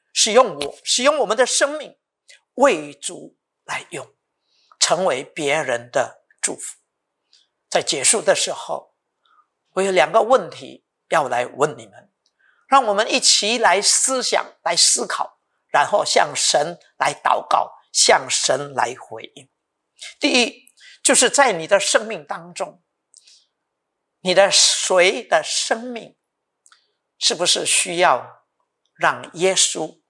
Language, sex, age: English, male, 50-69